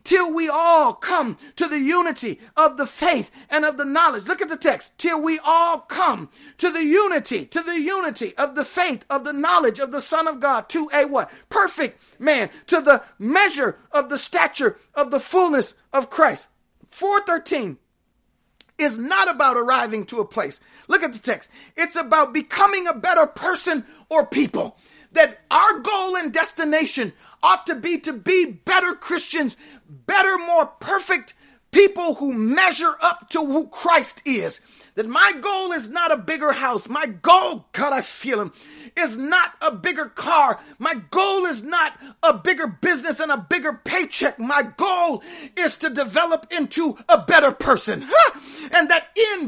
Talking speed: 170 wpm